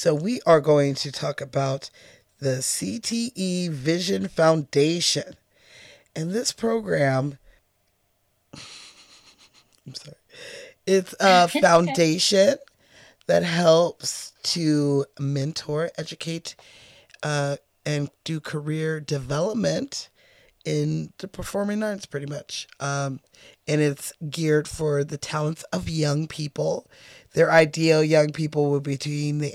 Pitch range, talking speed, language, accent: 140-165 Hz, 110 wpm, English, American